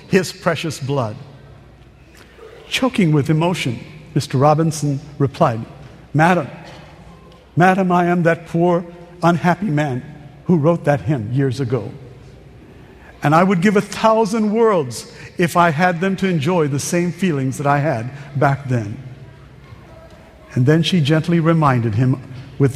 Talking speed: 135 wpm